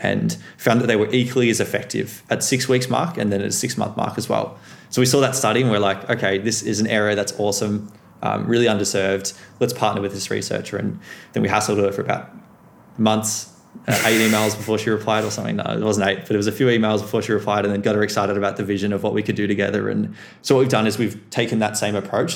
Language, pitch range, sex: English, 100-115 Hz, male